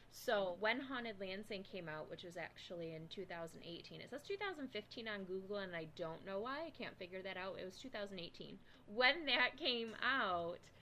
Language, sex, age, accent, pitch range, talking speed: English, female, 20-39, American, 170-215 Hz, 185 wpm